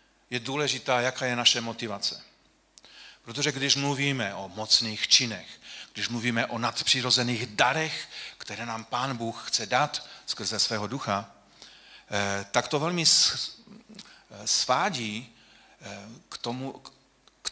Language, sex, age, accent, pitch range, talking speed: Czech, male, 40-59, native, 115-145 Hz, 110 wpm